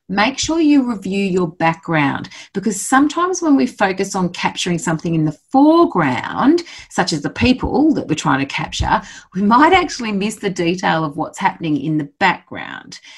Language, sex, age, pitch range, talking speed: English, female, 40-59, 150-240 Hz, 175 wpm